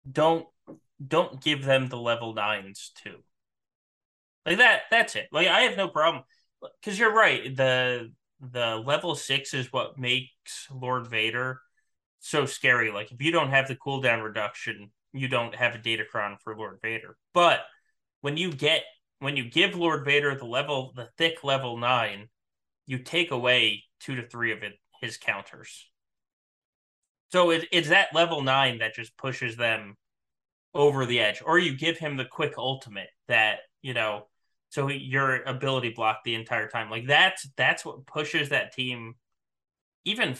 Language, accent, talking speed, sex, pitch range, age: English, American, 165 wpm, male, 115-145 Hz, 20-39